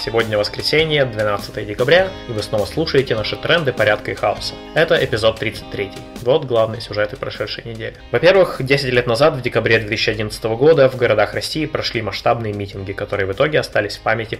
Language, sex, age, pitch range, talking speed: Russian, male, 20-39, 110-135 Hz, 170 wpm